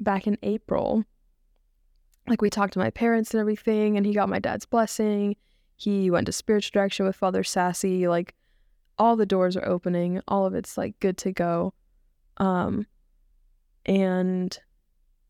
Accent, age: American, 20-39